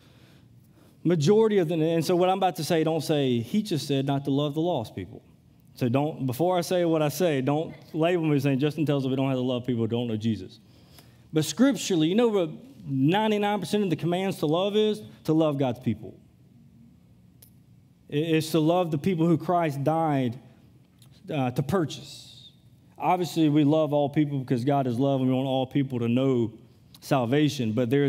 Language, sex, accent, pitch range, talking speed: English, male, American, 130-160 Hz, 195 wpm